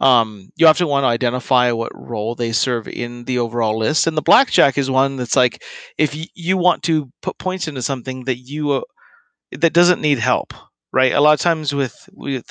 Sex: male